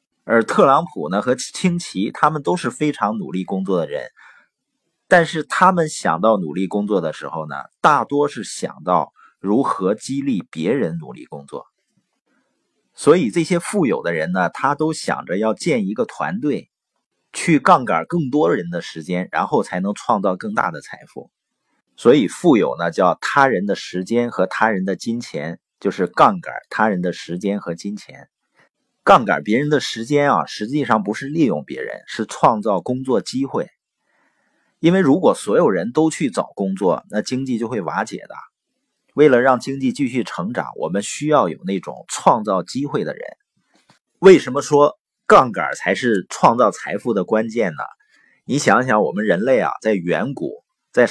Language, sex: Chinese, male